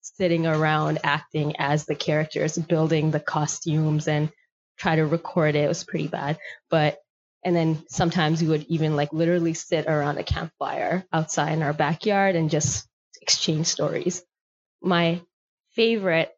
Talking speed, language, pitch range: 150 wpm, English, 160-180 Hz